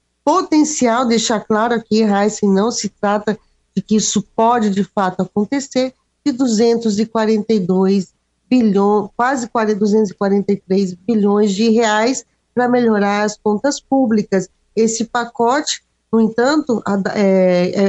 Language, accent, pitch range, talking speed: Portuguese, Brazilian, 200-240 Hz, 110 wpm